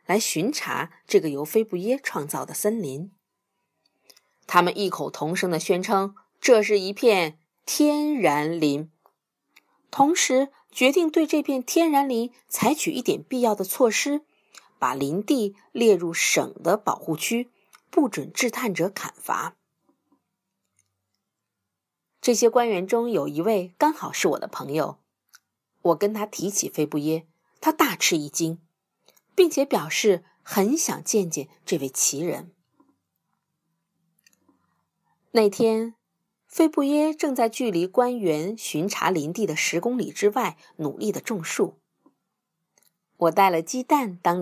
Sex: female